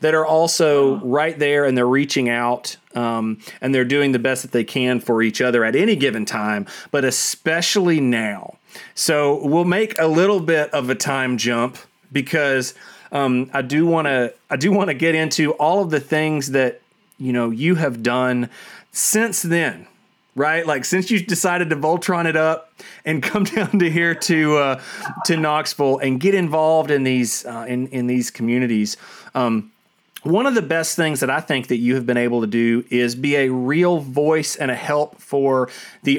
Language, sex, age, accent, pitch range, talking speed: English, male, 30-49, American, 130-170 Hz, 190 wpm